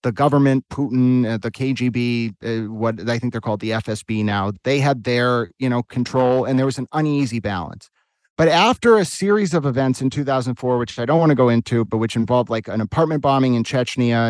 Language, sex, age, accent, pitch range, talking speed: English, male, 30-49, American, 115-150 Hz, 205 wpm